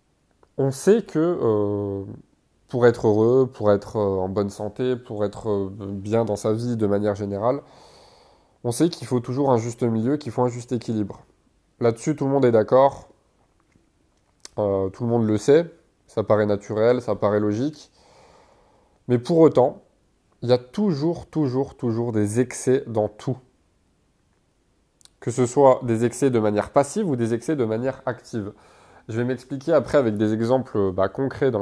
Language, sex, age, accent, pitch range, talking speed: French, male, 20-39, French, 110-140 Hz, 170 wpm